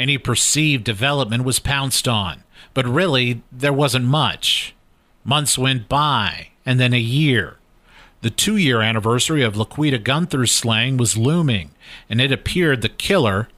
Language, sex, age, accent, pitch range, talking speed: English, male, 50-69, American, 115-145 Hz, 140 wpm